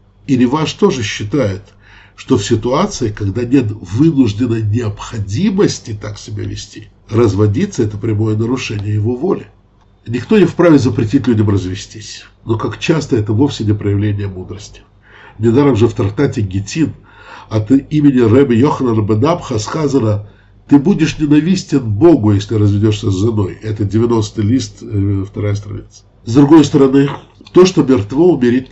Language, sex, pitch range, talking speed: English, male, 105-135 Hz, 135 wpm